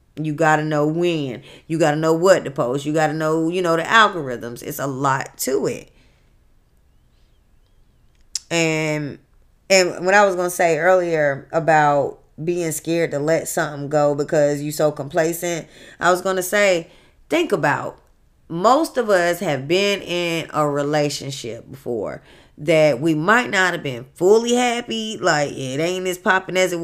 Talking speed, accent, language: 170 wpm, American, English